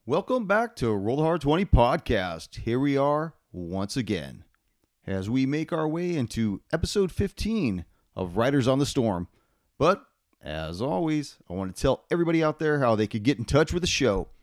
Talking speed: 185 wpm